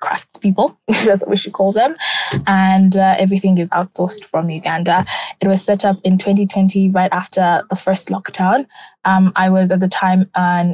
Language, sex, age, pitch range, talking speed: English, female, 20-39, 185-200 Hz, 180 wpm